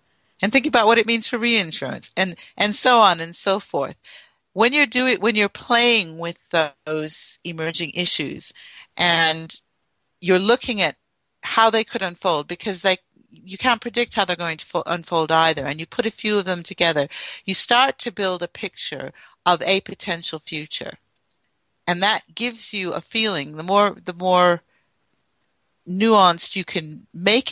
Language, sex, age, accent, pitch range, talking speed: English, female, 60-79, American, 165-215 Hz, 170 wpm